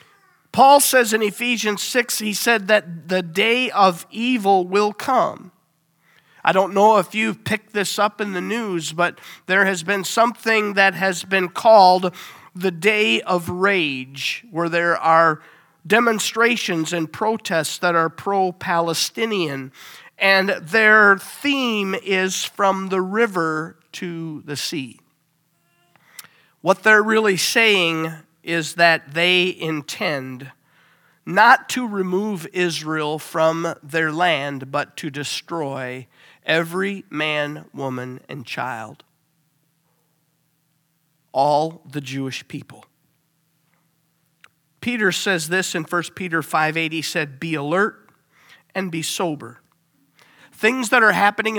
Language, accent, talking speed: English, American, 120 wpm